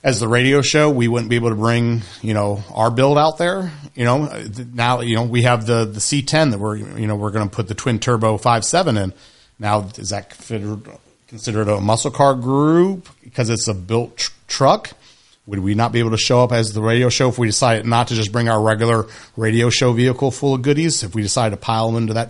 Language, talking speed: English, 235 wpm